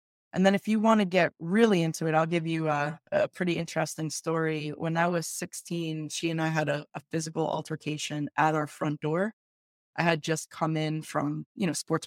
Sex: female